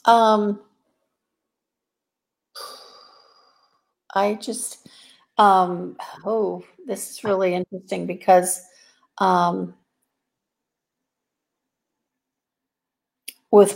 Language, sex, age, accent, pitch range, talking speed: English, female, 50-69, American, 180-215 Hz, 50 wpm